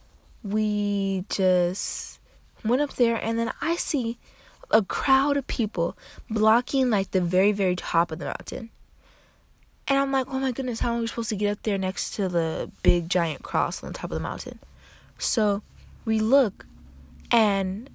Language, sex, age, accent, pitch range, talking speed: English, female, 20-39, American, 175-225 Hz, 175 wpm